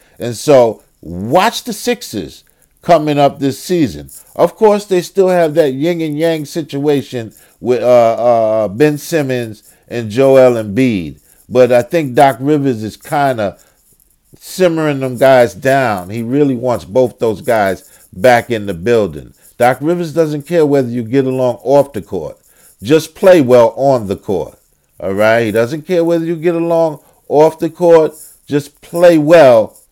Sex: male